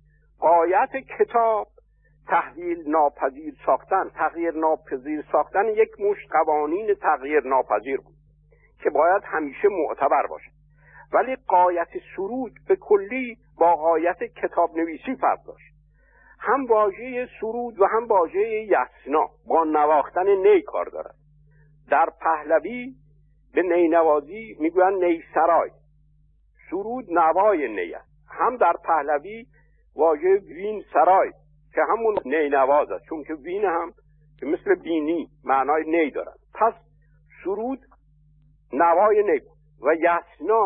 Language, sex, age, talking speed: Persian, male, 60-79, 115 wpm